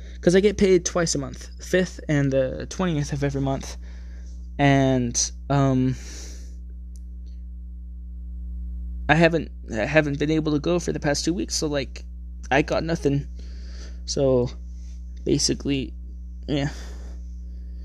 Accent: American